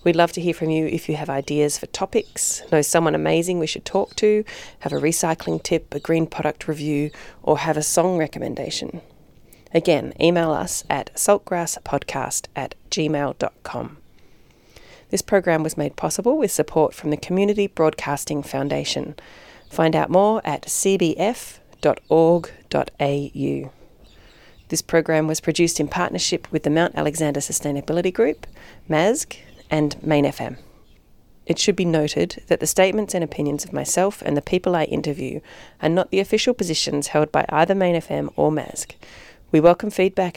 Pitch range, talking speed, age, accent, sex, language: 150-180 Hz, 155 wpm, 30-49, Australian, female, English